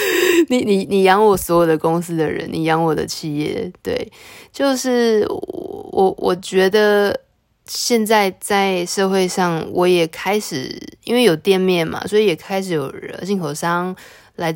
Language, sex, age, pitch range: Chinese, female, 20-39, 160-195 Hz